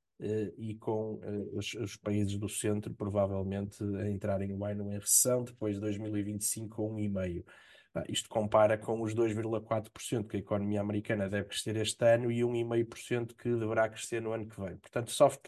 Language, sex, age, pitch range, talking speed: Portuguese, male, 20-39, 100-120 Hz, 170 wpm